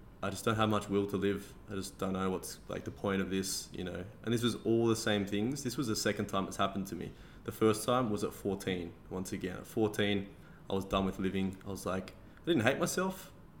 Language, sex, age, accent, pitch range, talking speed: English, male, 20-39, Australian, 95-105 Hz, 255 wpm